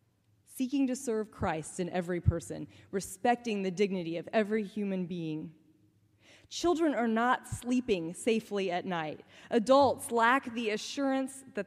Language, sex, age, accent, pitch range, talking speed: English, female, 20-39, American, 160-230 Hz, 135 wpm